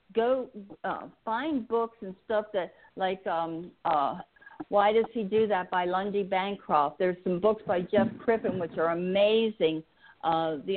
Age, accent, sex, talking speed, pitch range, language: 50-69, American, female, 160 wpm, 175-210 Hz, English